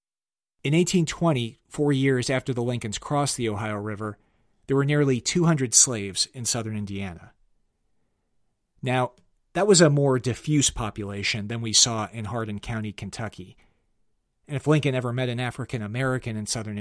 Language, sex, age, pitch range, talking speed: English, male, 40-59, 105-130 Hz, 155 wpm